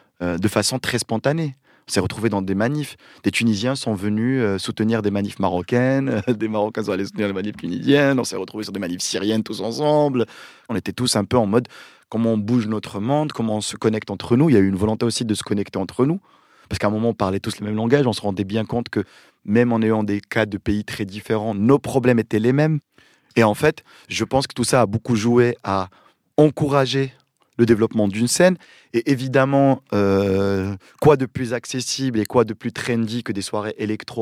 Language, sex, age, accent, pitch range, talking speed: French, male, 30-49, French, 105-130 Hz, 225 wpm